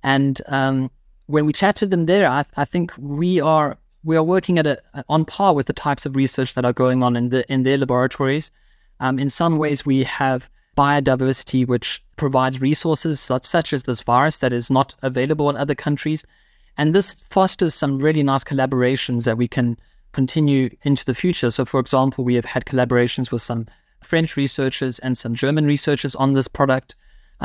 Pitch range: 125-145 Hz